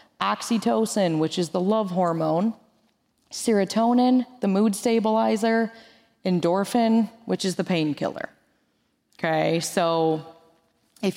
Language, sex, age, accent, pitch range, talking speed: English, female, 20-39, American, 160-205 Hz, 95 wpm